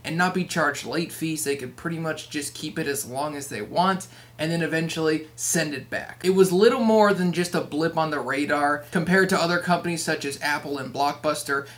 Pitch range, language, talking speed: 145-175 Hz, English, 225 wpm